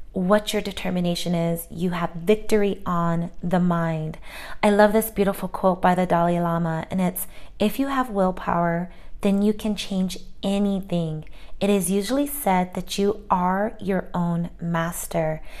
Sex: female